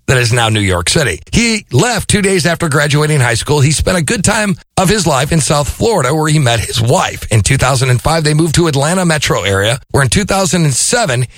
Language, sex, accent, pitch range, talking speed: English, male, American, 115-170 Hz, 215 wpm